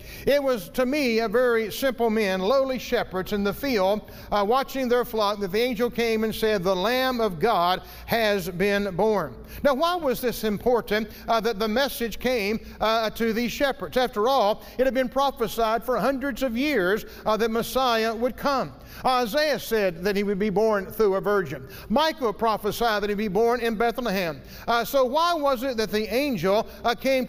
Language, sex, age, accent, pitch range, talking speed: English, male, 50-69, American, 210-255 Hz, 190 wpm